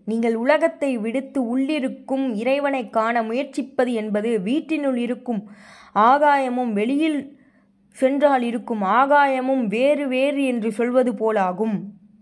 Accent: native